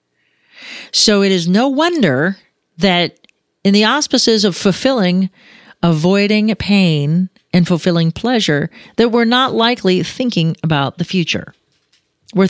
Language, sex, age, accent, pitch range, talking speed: English, female, 40-59, American, 170-215 Hz, 120 wpm